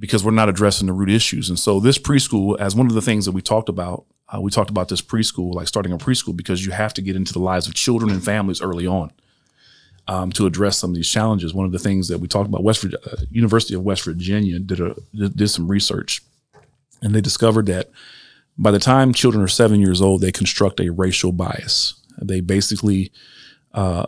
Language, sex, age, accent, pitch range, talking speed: English, male, 40-59, American, 95-110 Hz, 225 wpm